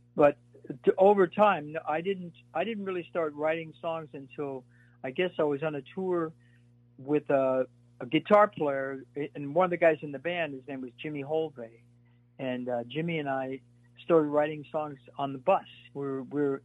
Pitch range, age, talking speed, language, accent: 125-160 Hz, 60-79, 180 wpm, English, American